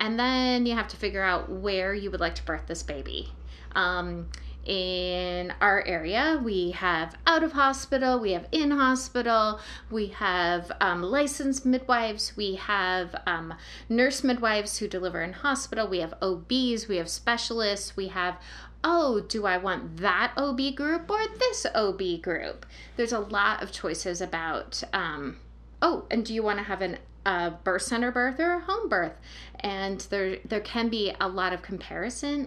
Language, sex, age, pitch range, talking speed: English, female, 30-49, 180-245 Hz, 170 wpm